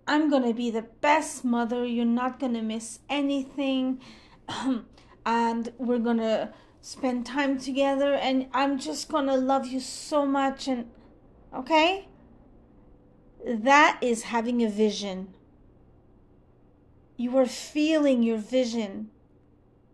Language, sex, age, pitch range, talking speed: English, female, 30-49, 225-275 Hz, 125 wpm